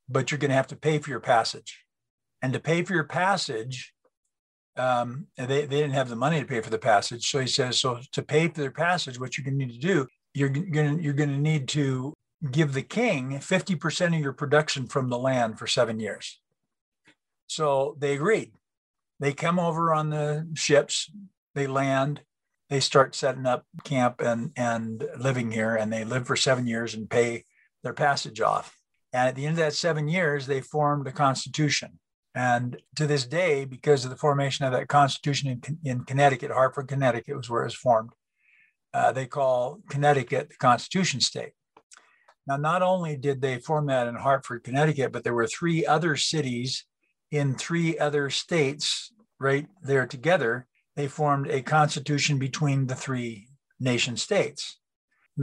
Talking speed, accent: 185 wpm, American